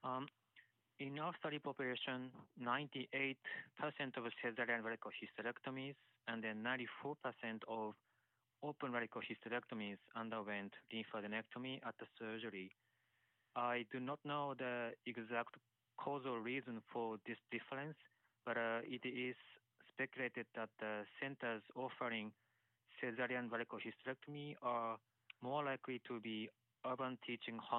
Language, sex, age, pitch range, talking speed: English, male, 20-39, 115-130 Hz, 110 wpm